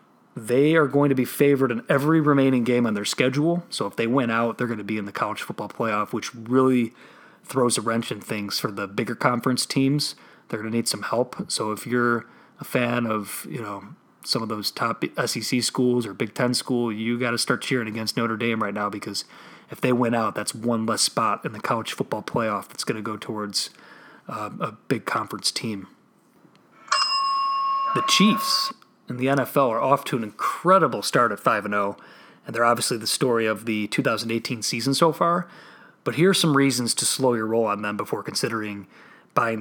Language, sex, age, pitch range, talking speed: English, male, 30-49, 115-145 Hz, 210 wpm